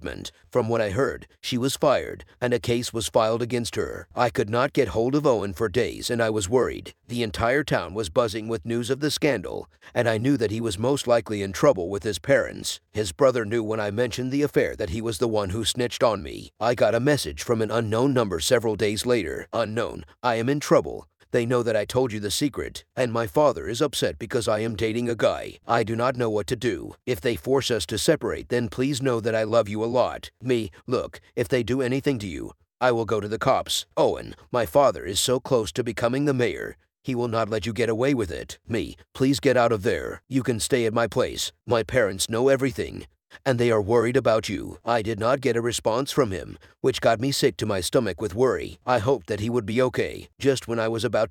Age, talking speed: 50-69, 245 wpm